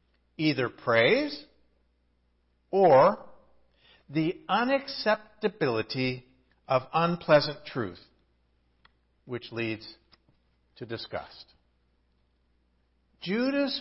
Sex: male